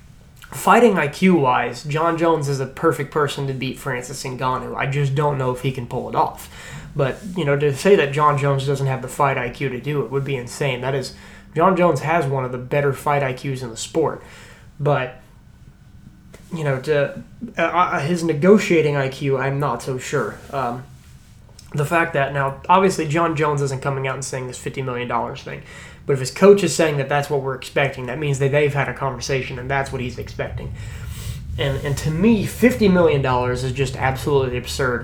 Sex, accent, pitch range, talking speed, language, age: male, American, 130-160 Hz, 205 wpm, English, 20-39